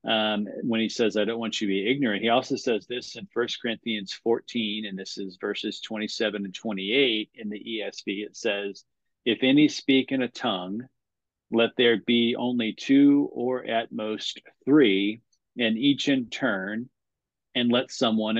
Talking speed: 175 wpm